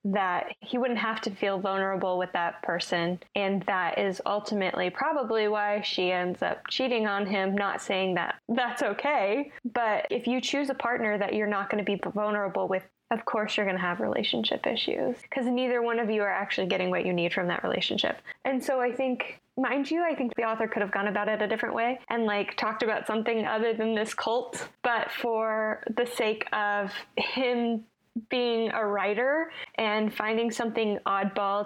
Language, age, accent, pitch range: English, 10-29, American, 195-240 Hz